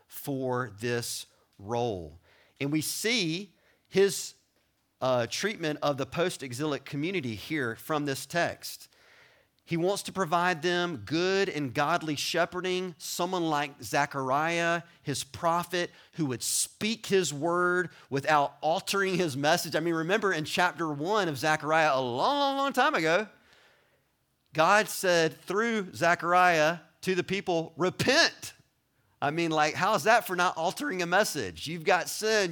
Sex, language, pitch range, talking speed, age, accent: male, English, 135-185 Hz, 140 wpm, 40-59, American